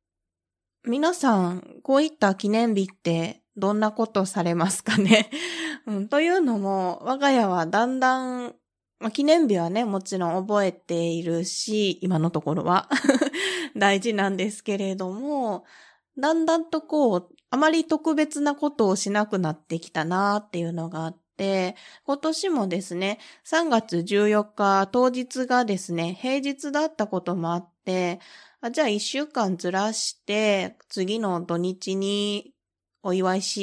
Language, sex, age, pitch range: Japanese, female, 20-39, 180-255 Hz